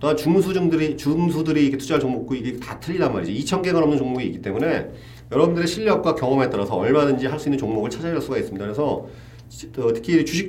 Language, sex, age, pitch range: Korean, male, 40-59, 115-155 Hz